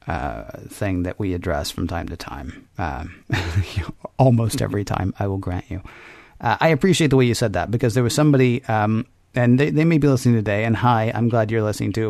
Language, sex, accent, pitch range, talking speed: English, male, American, 105-140 Hz, 225 wpm